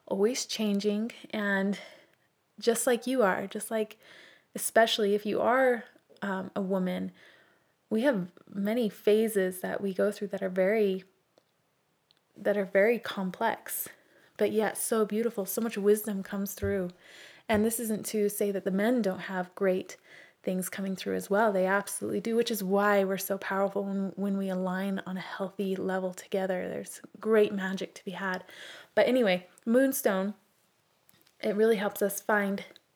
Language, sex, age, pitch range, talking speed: English, female, 20-39, 195-220 Hz, 160 wpm